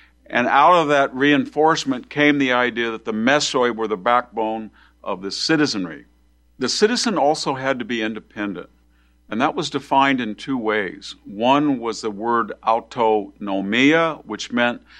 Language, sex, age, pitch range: English, male, 50-69, 100-135 Hz